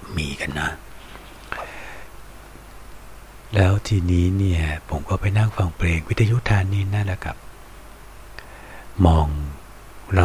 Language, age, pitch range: Thai, 60-79, 80-100 Hz